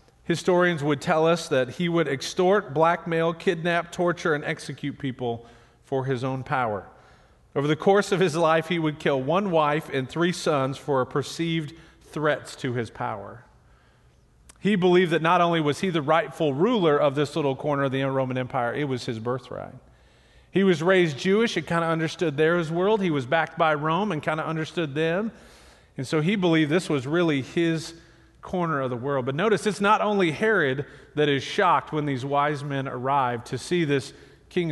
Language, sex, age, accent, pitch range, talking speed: English, male, 40-59, American, 135-175 Hz, 190 wpm